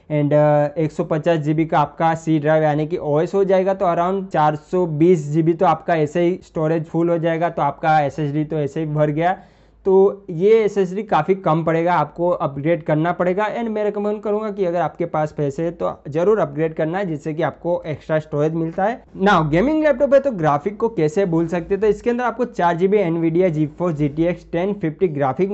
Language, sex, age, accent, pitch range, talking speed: Hindi, male, 20-39, native, 160-205 Hz, 205 wpm